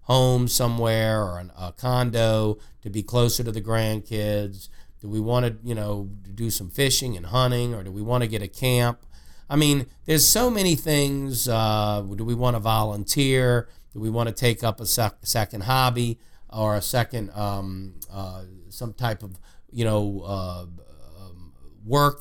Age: 50-69